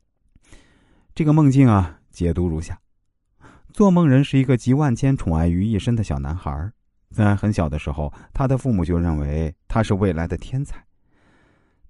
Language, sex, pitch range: Chinese, male, 85-130 Hz